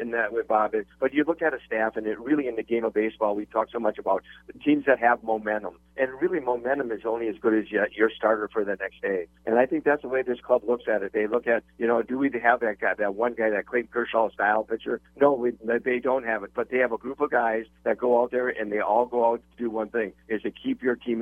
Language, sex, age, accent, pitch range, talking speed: English, male, 50-69, American, 110-125 Hz, 290 wpm